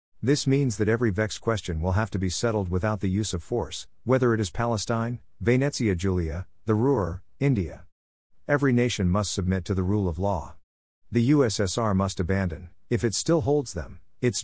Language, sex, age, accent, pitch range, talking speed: English, male, 50-69, American, 90-115 Hz, 185 wpm